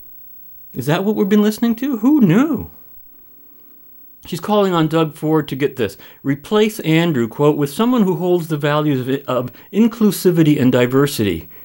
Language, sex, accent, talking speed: English, male, American, 155 wpm